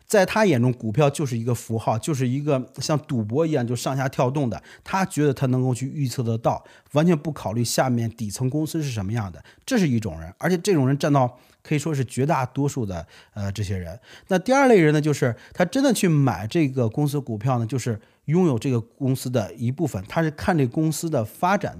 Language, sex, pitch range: Chinese, male, 125-180 Hz